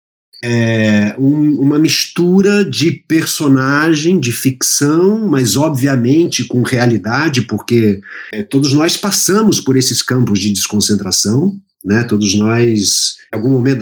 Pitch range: 110-160 Hz